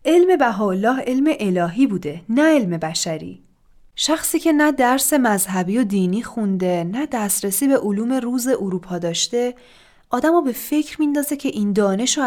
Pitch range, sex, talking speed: 205-295 Hz, female, 150 wpm